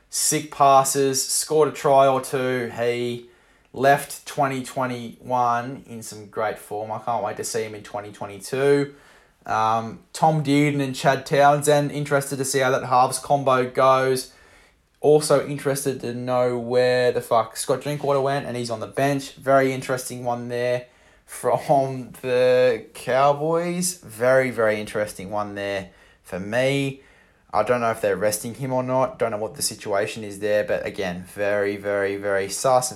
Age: 20-39